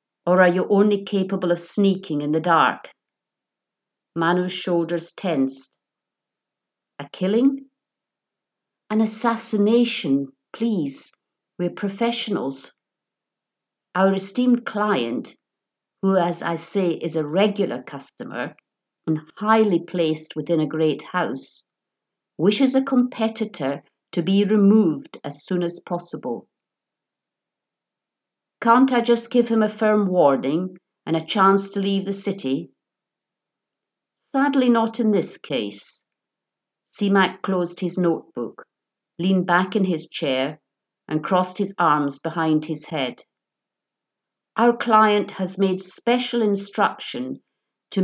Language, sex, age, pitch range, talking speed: English, female, 50-69, 170-215 Hz, 115 wpm